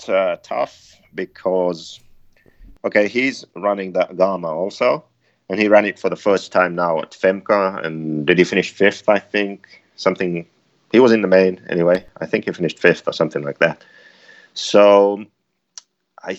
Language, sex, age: English, male, 30-49